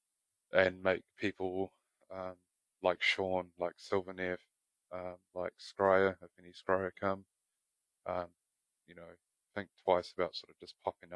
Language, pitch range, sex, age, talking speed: English, 90-95 Hz, male, 20-39, 135 wpm